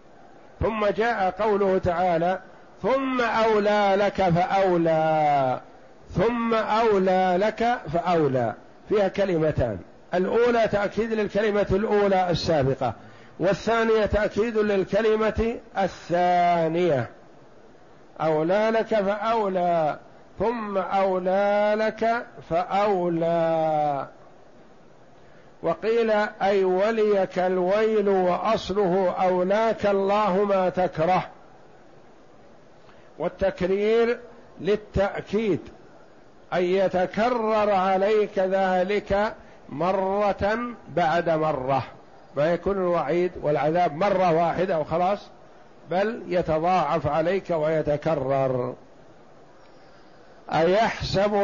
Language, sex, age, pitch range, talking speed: Arabic, male, 50-69, 170-210 Hz, 70 wpm